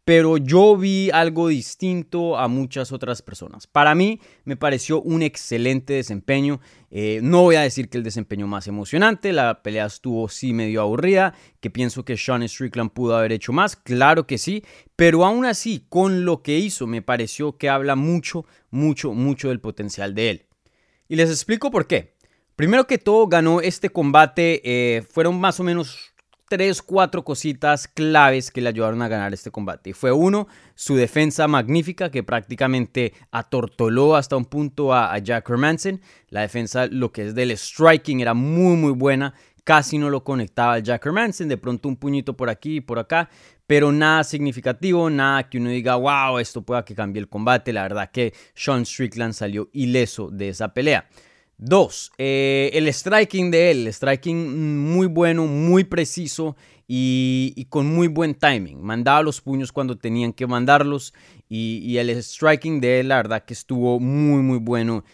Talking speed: 180 wpm